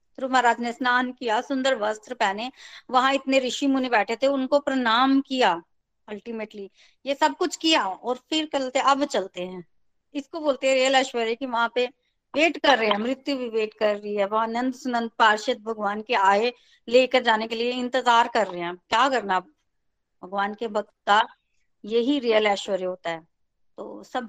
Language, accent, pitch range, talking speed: Hindi, native, 225-275 Hz, 175 wpm